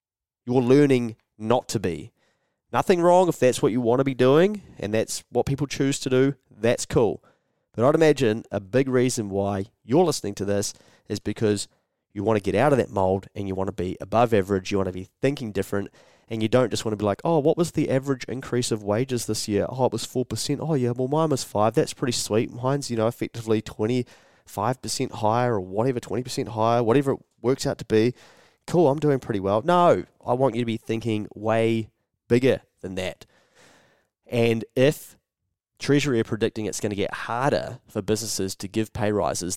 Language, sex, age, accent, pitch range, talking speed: English, male, 30-49, Australian, 100-130 Hz, 210 wpm